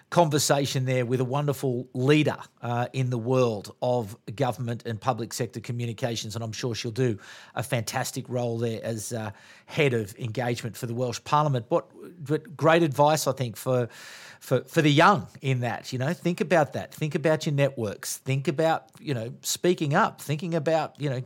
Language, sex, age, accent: English, male, 40-59, Australian